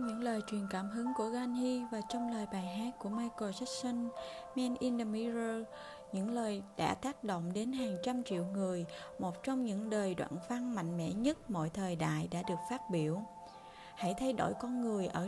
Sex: female